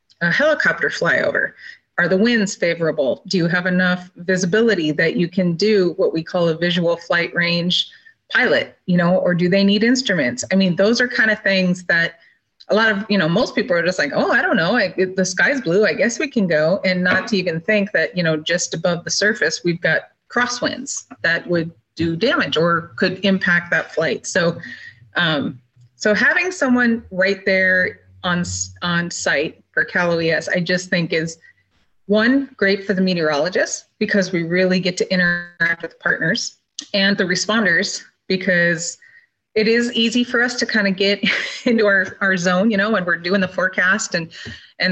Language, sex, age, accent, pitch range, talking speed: English, female, 30-49, American, 175-215 Hz, 190 wpm